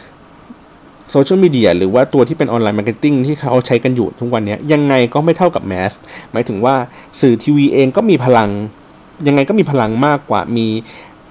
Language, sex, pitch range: Thai, male, 105-140 Hz